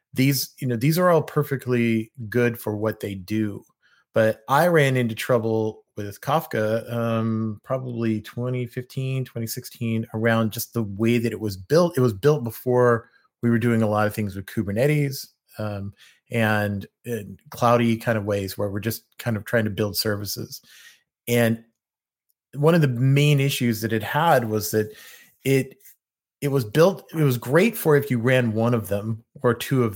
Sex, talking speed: male, 175 wpm